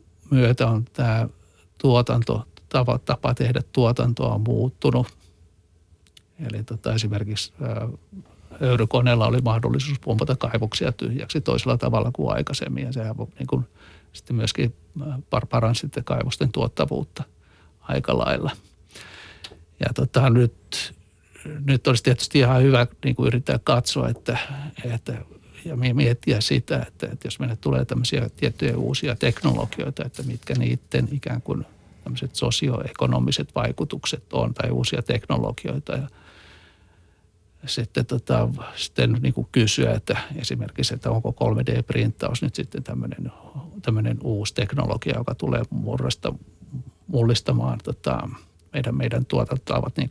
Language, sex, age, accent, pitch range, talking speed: Finnish, male, 60-79, native, 90-130 Hz, 115 wpm